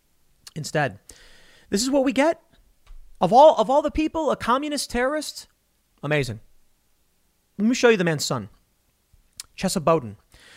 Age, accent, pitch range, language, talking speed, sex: 30-49, American, 130-185 Hz, English, 140 wpm, male